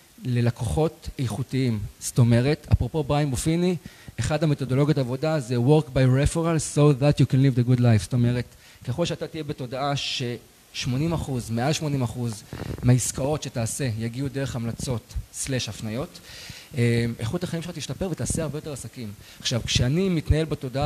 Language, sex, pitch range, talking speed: Hebrew, male, 120-155 Hz, 150 wpm